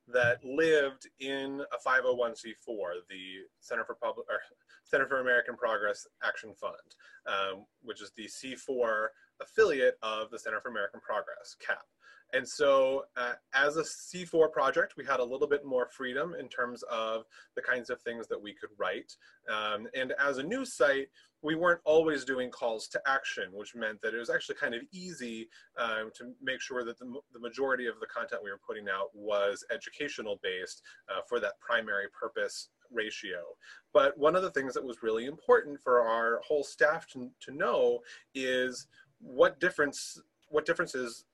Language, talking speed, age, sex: English, 175 wpm, 20-39, male